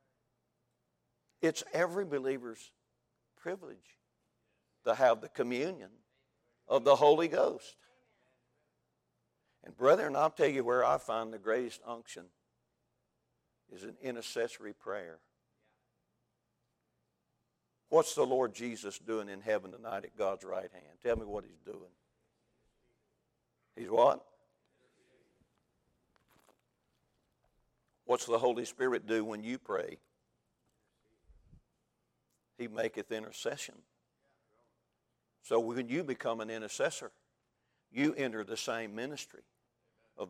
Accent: American